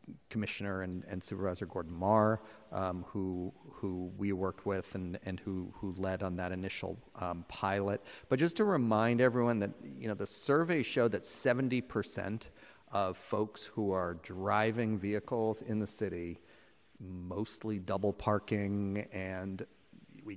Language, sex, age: English, male, 50-69